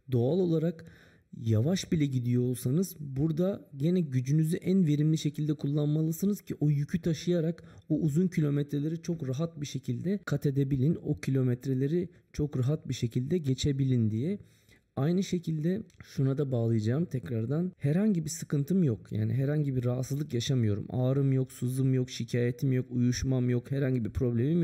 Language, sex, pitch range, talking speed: Turkish, male, 125-165 Hz, 145 wpm